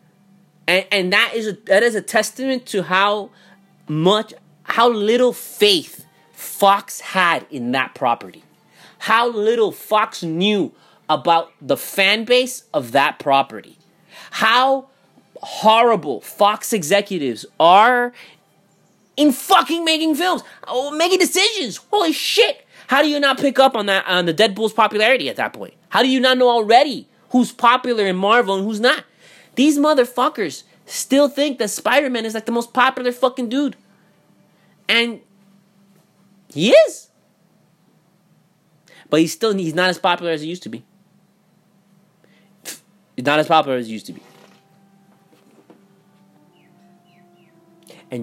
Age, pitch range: 30-49, 175-240 Hz